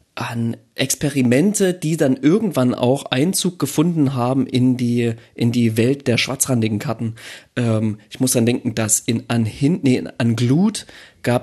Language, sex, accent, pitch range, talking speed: German, male, German, 115-145 Hz, 160 wpm